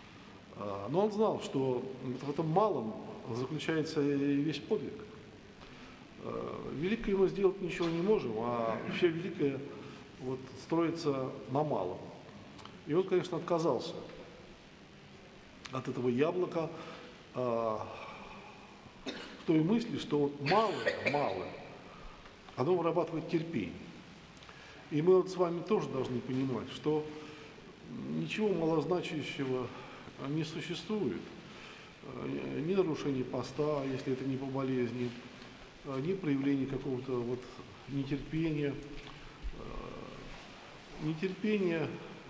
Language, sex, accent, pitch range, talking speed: Russian, male, native, 130-165 Hz, 95 wpm